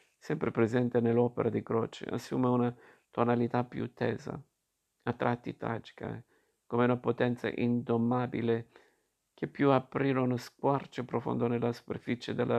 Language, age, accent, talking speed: Italian, 50-69, native, 130 wpm